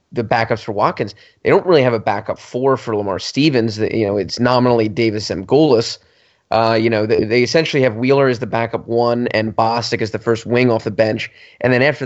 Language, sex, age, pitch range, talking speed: English, male, 20-39, 105-130 Hz, 225 wpm